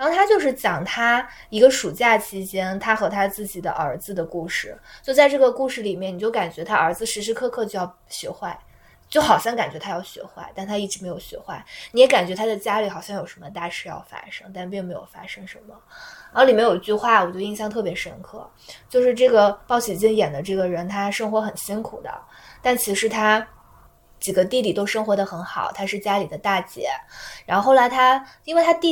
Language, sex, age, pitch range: Chinese, female, 20-39, 190-235 Hz